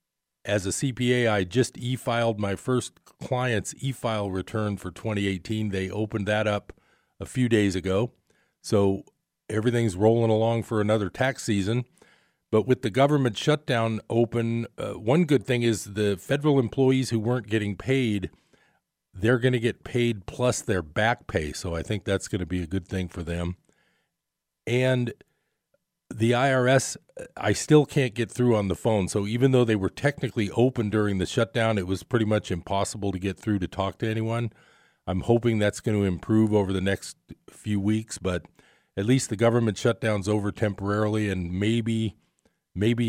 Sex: male